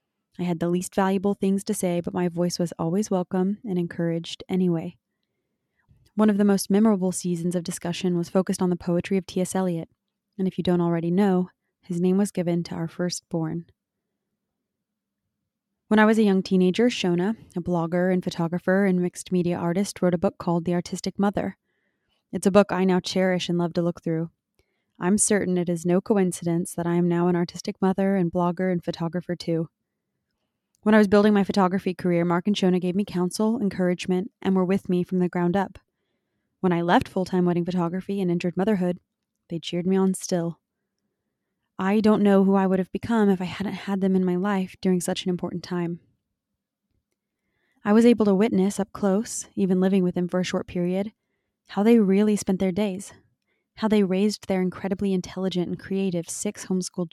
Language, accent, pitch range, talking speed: English, American, 175-195 Hz, 195 wpm